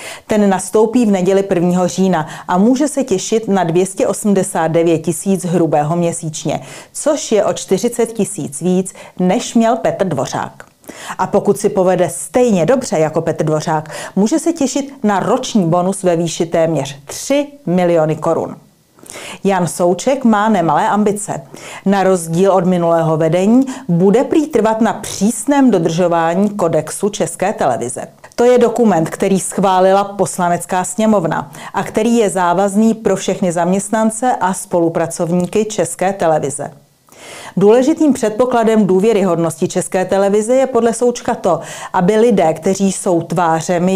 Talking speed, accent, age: 130 wpm, native, 40-59